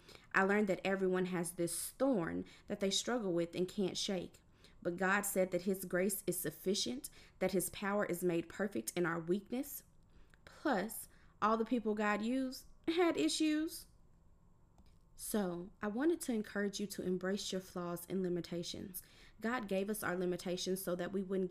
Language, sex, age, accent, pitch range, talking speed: English, female, 20-39, American, 180-205 Hz, 165 wpm